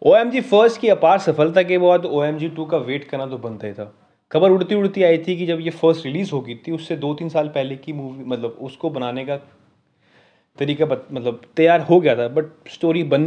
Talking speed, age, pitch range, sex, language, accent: 230 wpm, 20-39, 135-170 Hz, male, Hindi, native